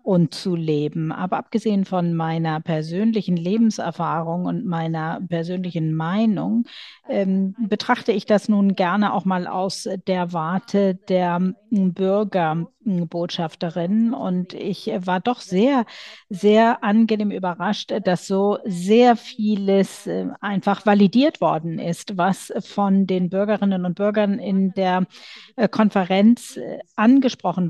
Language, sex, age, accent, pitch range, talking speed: German, female, 40-59, German, 175-220 Hz, 115 wpm